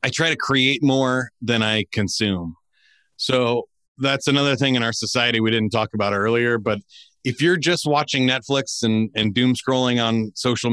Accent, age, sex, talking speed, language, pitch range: American, 30-49, male, 180 wpm, English, 110-135 Hz